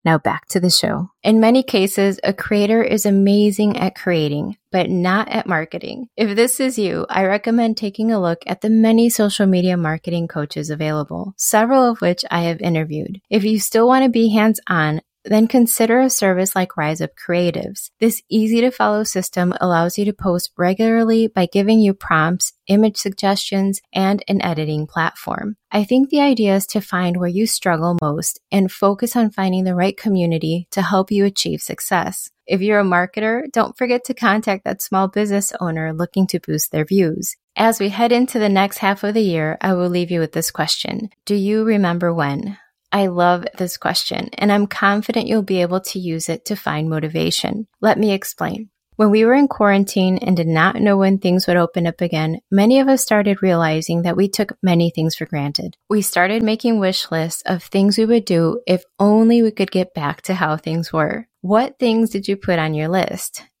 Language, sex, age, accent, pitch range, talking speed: English, female, 20-39, American, 175-220 Hz, 195 wpm